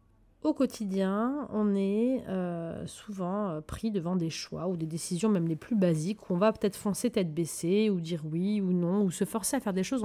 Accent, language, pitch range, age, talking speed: French, French, 185-255 Hz, 30-49, 215 wpm